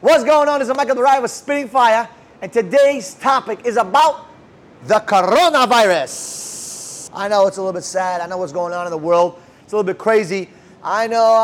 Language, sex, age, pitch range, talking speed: English, male, 30-49, 185-250 Hz, 210 wpm